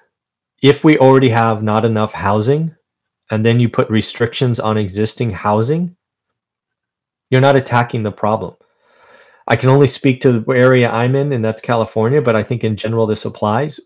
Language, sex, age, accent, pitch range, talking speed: English, male, 30-49, American, 110-140 Hz, 170 wpm